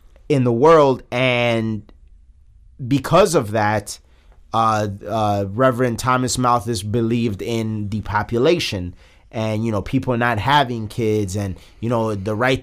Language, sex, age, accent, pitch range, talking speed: English, male, 30-49, American, 100-140 Hz, 130 wpm